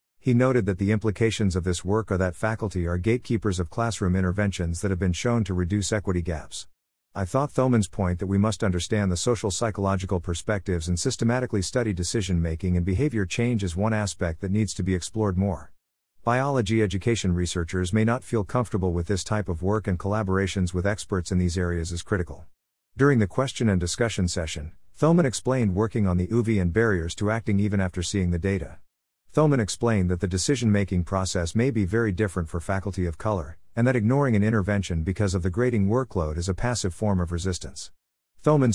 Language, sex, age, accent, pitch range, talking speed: English, male, 50-69, American, 90-110 Hz, 195 wpm